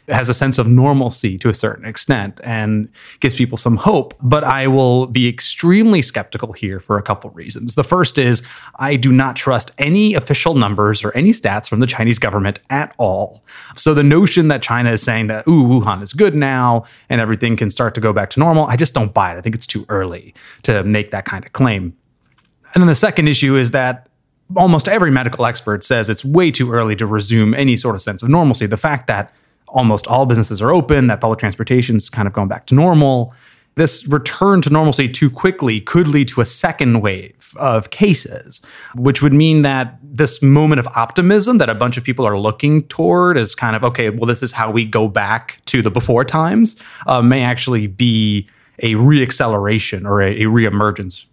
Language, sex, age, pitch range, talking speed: English, male, 30-49, 110-140 Hz, 210 wpm